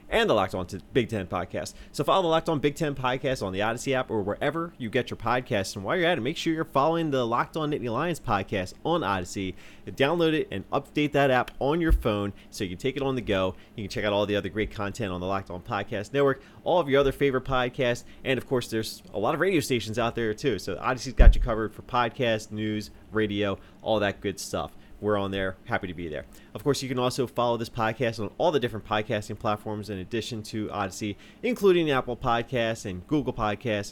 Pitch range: 100-130 Hz